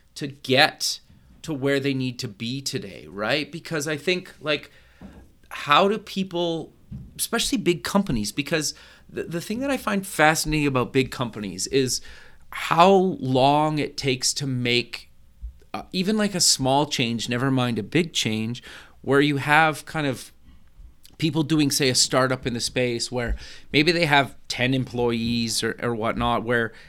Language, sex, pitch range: English, male, 120-150 Hz